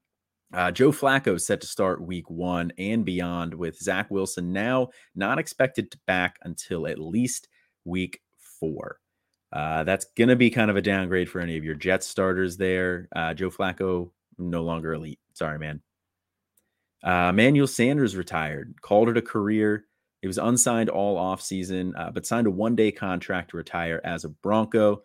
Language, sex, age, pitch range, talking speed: English, male, 30-49, 90-110 Hz, 170 wpm